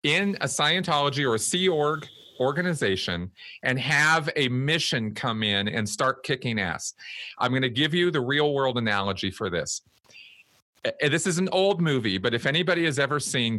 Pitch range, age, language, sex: 115-155 Hz, 40-59, English, male